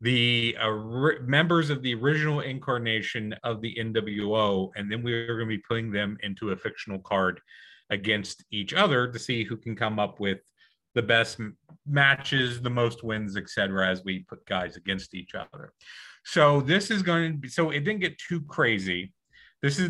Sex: male